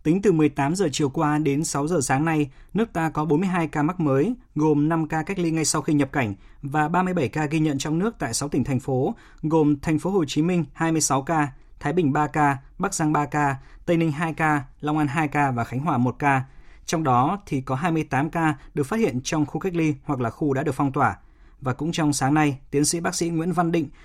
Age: 20-39